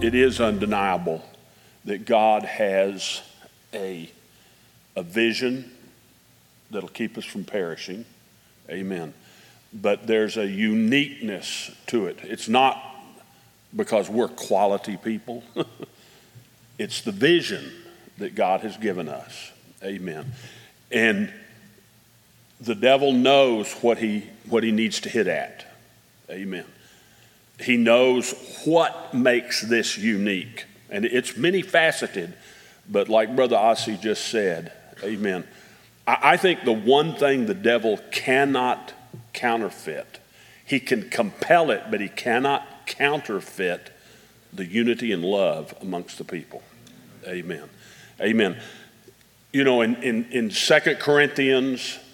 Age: 50-69